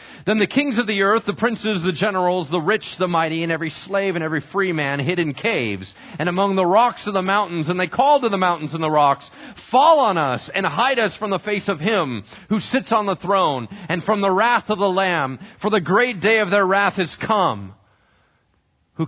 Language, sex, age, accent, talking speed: English, male, 30-49, American, 230 wpm